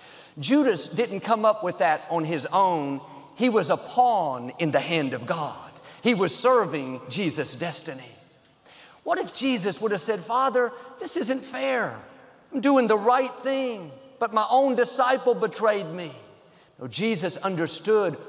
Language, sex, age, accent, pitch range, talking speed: English, male, 50-69, American, 160-230 Hz, 150 wpm